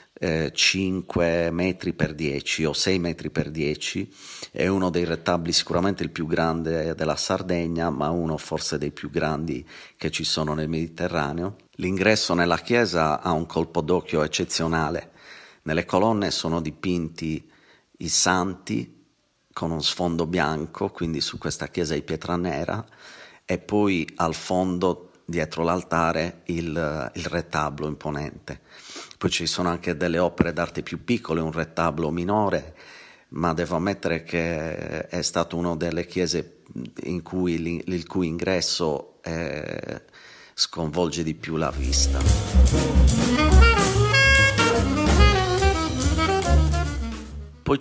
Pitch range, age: 80-90 Hz, 40-59